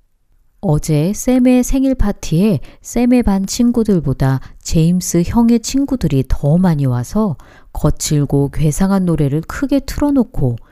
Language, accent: Korean, native